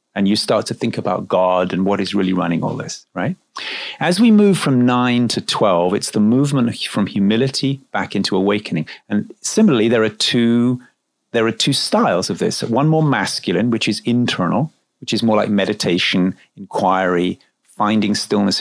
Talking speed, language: 175 wpm, English